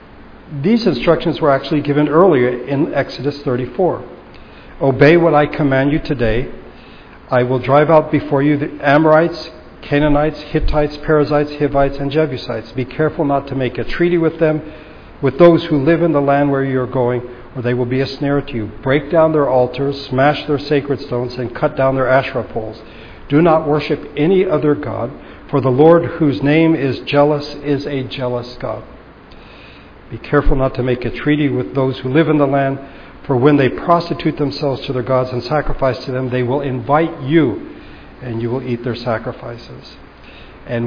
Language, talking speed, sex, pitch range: English, 185 wpm, male, 125-150 Hz